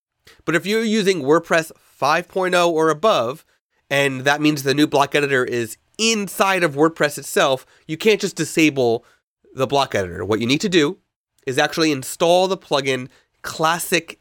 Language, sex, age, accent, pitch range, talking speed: English, male, 30-49, American, 120-165 Hz, 160 wpm